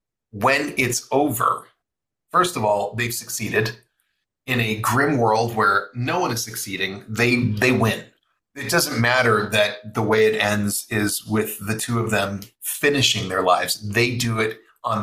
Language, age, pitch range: English, 30-49, 105-125 Hz